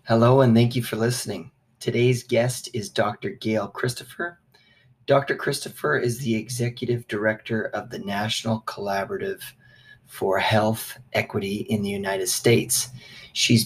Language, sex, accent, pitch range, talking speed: English, male, American, 110-130 Hz, 130 wpm